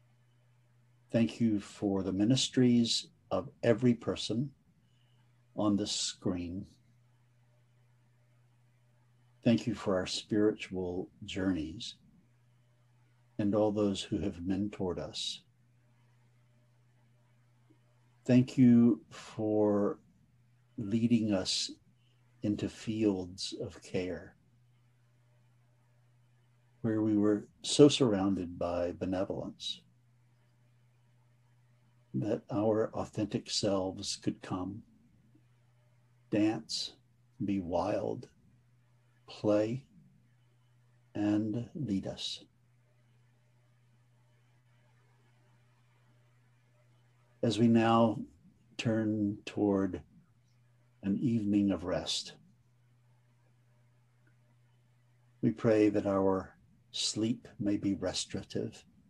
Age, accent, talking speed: 60-79, American, 70 wpm